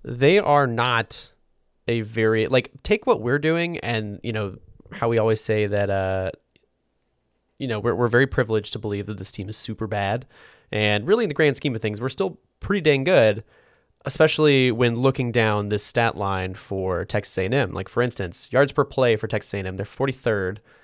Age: 20-39